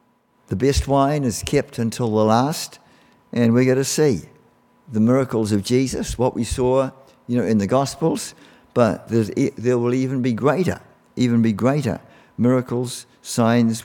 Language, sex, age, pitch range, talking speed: English, male, 50-69, 115-140 Hz, 160 wpm